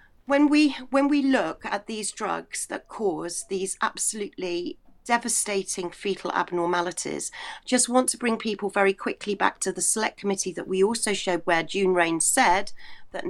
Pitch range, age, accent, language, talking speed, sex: 185-240 Hz, 40-59, British, English, 165 wpm, female